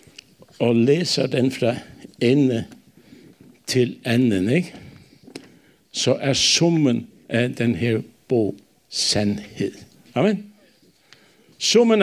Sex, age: male, 60-79